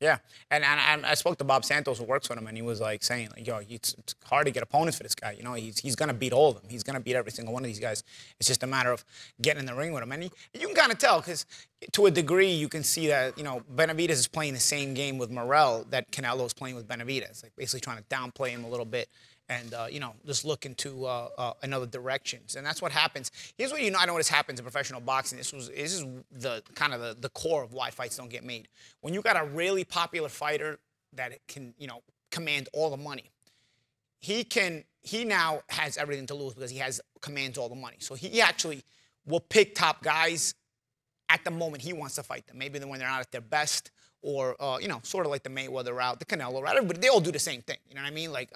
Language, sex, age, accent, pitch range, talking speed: English, male, 30-49, American, 125-155 Hz, 270 wpm